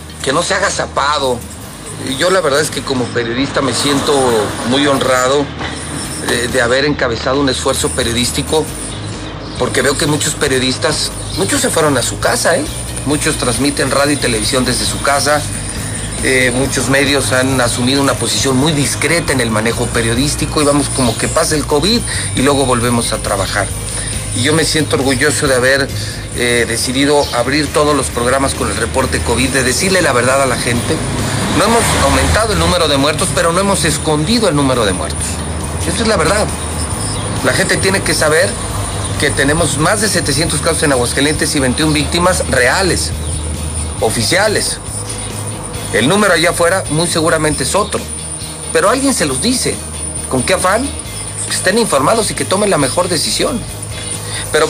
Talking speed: 170 wpm